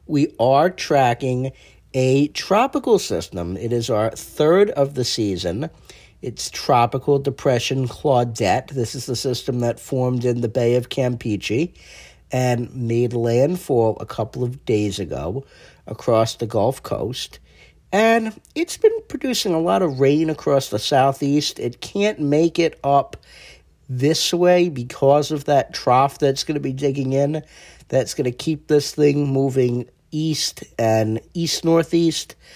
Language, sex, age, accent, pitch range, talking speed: English, male, 50-69, American, 125-170 Hz, 145 wpm